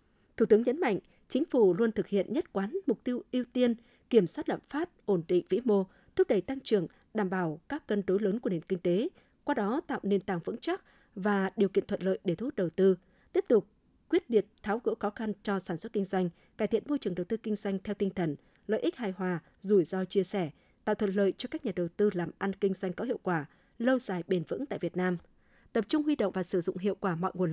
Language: Vietnamese